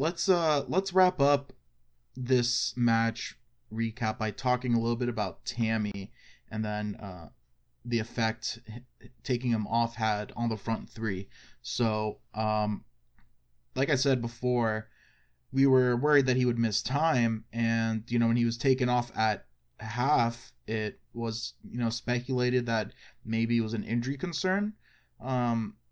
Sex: male